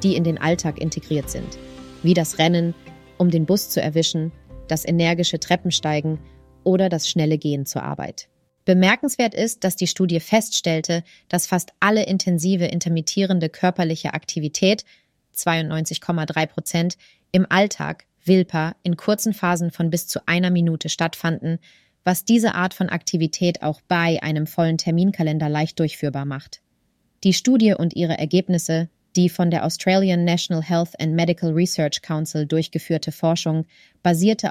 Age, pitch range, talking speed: 30-49, 155-175 Hz, 140 wpm